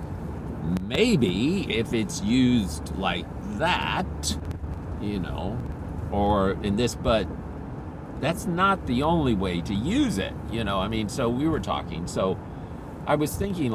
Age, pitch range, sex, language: 50-69, 100-145 Hz, male, English